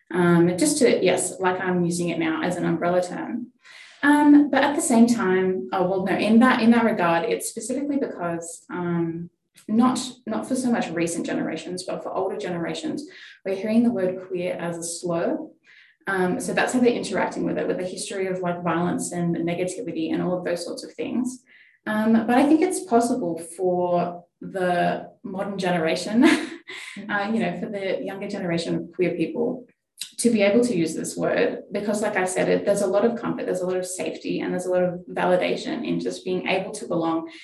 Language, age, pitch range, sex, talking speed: English, 10-29, 170-225 Hz, female, 205 wpm